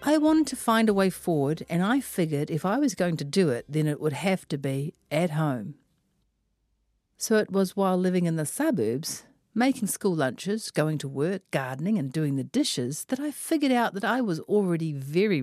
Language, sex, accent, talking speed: English, female, Australian, 205 wpm